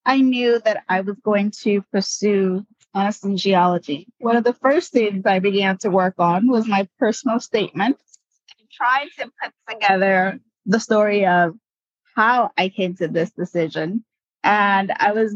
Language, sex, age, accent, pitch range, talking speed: English, female, 30-49, American, 185-245 Hz, 165 wpm